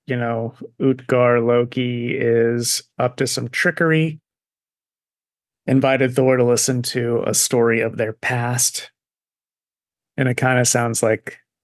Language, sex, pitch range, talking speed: English, male, 115-130 Hz, 125 wpm